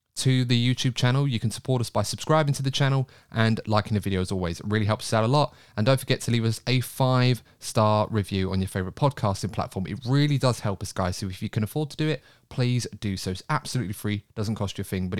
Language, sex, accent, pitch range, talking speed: English, male, British, 105-135 Hz, 260 wpm